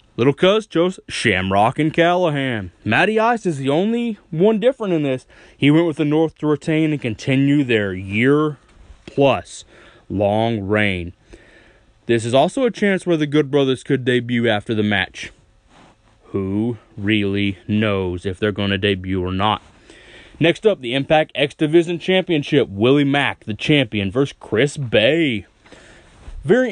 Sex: male